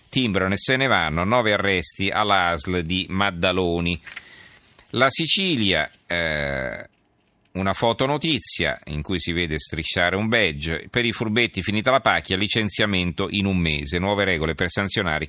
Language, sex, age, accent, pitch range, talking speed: Italian, male, 40-59, native, 85-110 Hz, 140 wpm